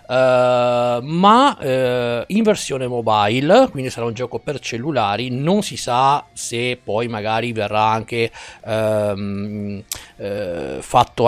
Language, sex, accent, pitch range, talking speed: Italian, male, native, 120-155 Hz, 100 wpm